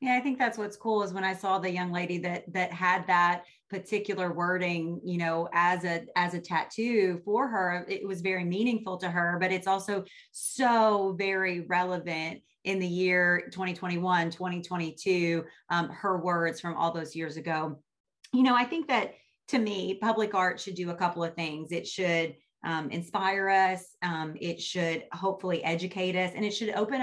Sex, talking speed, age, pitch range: female, 185 wpm, 30-49, 170-205 Hz